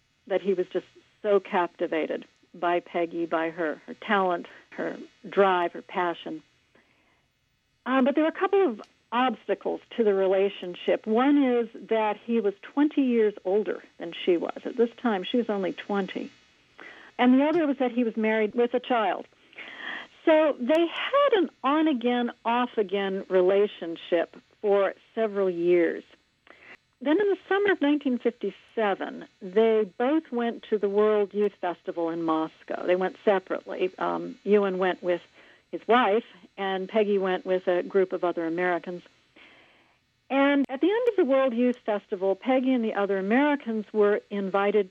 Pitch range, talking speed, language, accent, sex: 185-250 Hz, 155 wpm, English, American, female